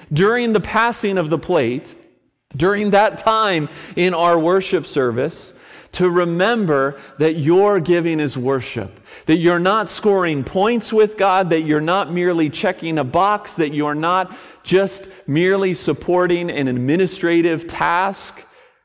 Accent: American